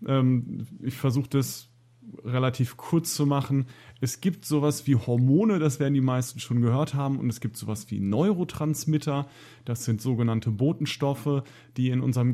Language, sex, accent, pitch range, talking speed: German, male, German, 120-140 Hz, 155 wpm